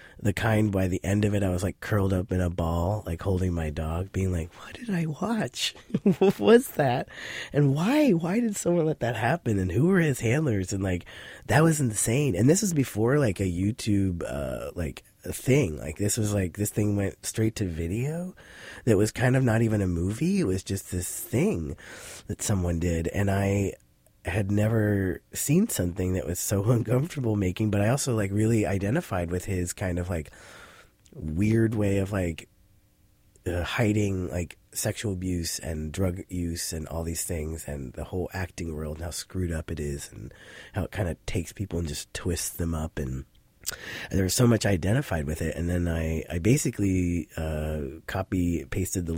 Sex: male